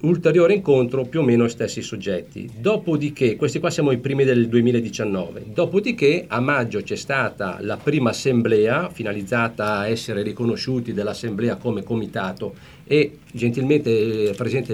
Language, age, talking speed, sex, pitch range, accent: Italian, 50-69, 140 wpm, male, 115-160 Hz, native